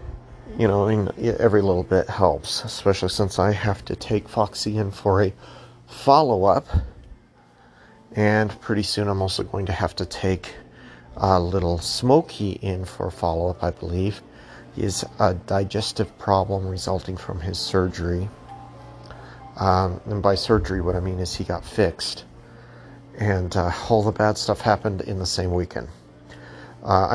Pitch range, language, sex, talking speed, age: 90-110 Hz, English, male, 150 wpm, 40-59